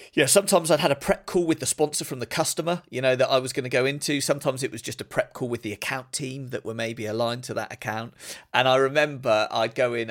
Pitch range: 120-155 Hz